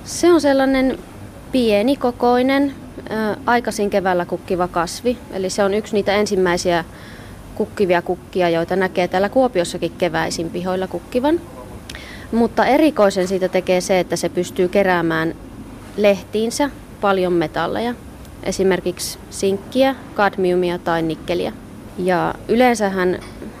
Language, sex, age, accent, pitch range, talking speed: Finnish, female, 20-39, native, 180-220 Hz, 105 wpm